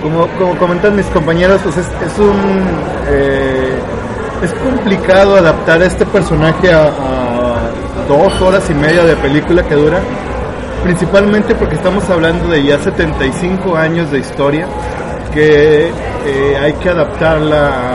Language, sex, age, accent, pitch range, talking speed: Spanish, male, 30-49, Mexican, 145-185 Hz, 135 wpm